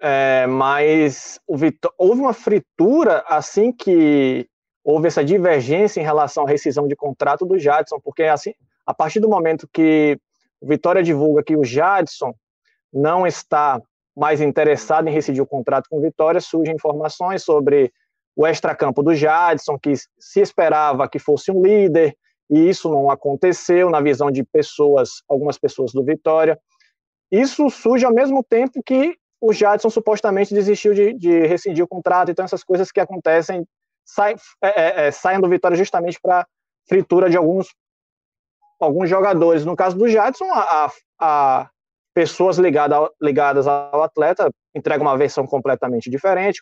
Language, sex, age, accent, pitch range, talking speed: Portuguese, male, 20-39, Brazilian, 145-195 Hz, 155 wpm